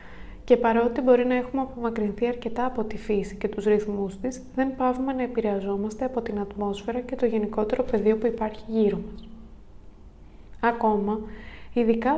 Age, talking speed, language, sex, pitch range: 20-39, 155 wpm, Greek, female, 210-240 Hz